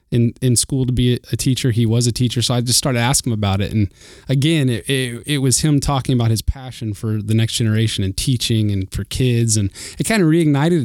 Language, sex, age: English, male, 20-39